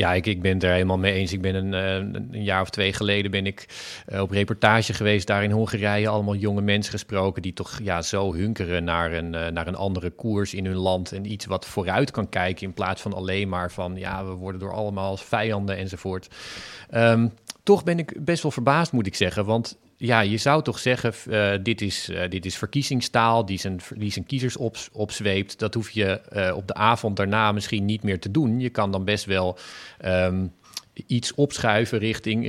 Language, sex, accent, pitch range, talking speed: Dutch, male, Dutch, 95-110 Hz, 200 wpm